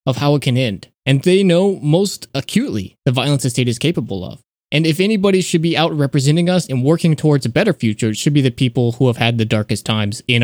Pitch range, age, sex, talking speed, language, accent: 125-165 Hz, 20-39, male, 245 wpm, English, American